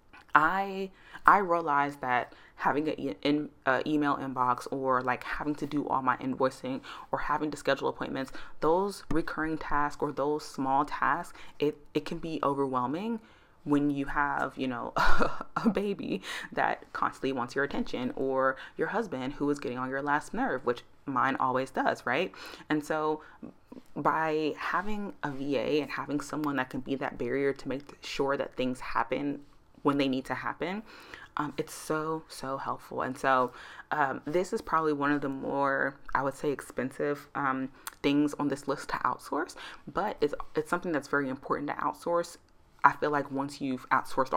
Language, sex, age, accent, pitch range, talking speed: English, female, 20-39, American, 135-155 Hz, 170 wpm